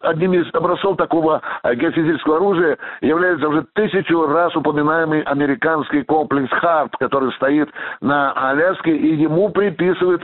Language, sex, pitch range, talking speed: Russian, male, 150-185 Hz, 125 wpm